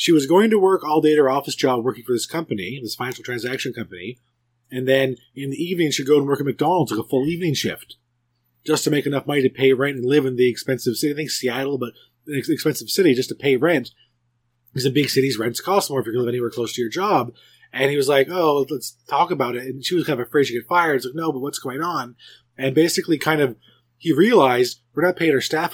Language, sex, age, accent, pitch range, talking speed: English, male, 30-49, American, 120-155 Hz, 265 wpm